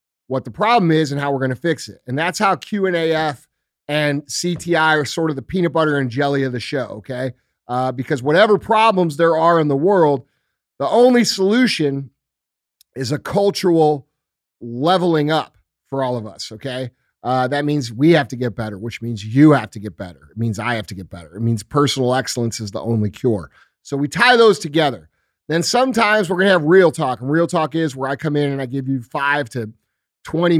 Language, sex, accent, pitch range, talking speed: English, male, American, 130-165 Hz, 220 wpm